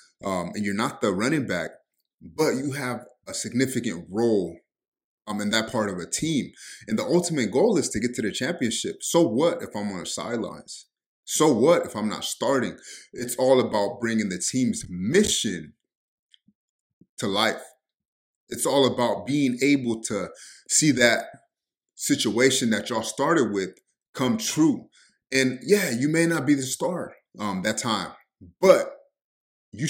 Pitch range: 115-150 Hz